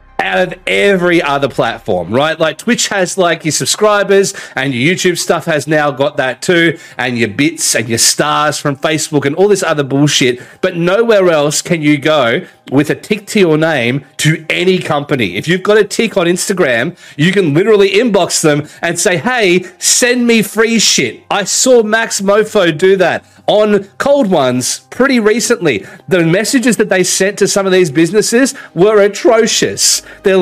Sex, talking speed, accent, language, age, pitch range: male, 180 wpm, Australian, English, 40-59, 155-205 Hz